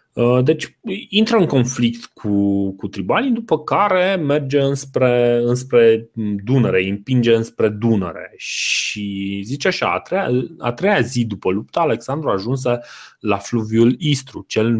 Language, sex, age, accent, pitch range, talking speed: Romanian, male, 20-39, native, 100-135 Hz, 135 wpm